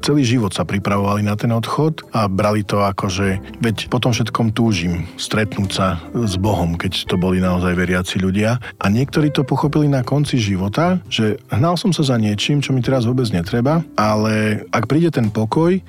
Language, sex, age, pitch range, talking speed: Slovak, male, 40-59, 95-115 Hz, 185 wpm